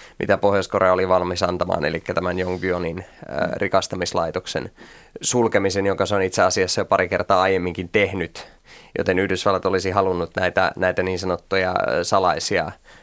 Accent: native